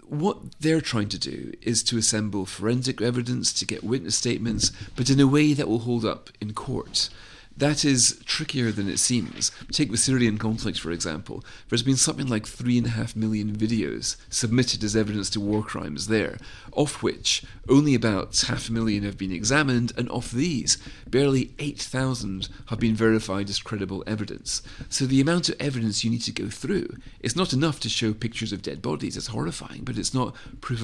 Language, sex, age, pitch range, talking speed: English, male, 40-59, 105-130 Hz, 195 wpm